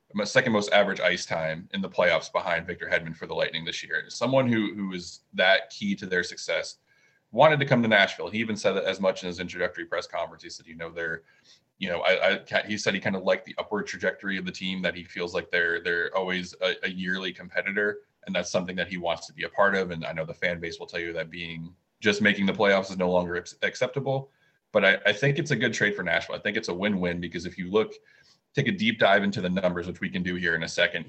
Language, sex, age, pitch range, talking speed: English, male, 20-39, 85-105 Hz, 270 wpm